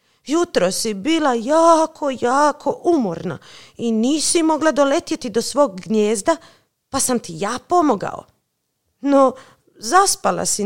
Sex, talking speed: female, 120 wpm